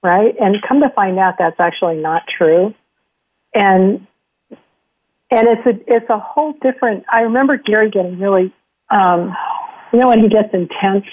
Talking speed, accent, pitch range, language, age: 160 wpm, American, 170-200 Hz, English, 50-69